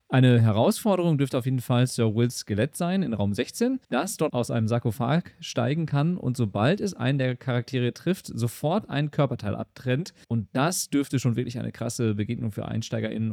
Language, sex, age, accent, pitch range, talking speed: German, male, 40-59, German, 110-140 Hz, 185 wpm